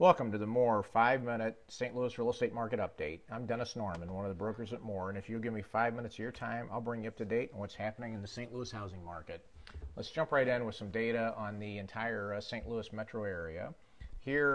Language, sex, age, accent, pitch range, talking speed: English, male, 40-59, American, 100-115 Hz, 255 wpm